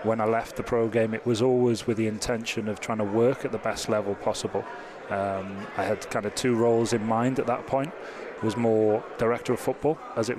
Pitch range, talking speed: 110-120 Hz, 230 wpm